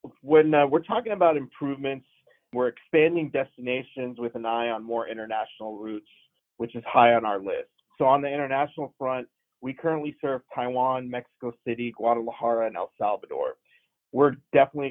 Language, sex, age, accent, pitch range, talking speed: English, male, 30-49, American, 120-145 Hz, 155 wpm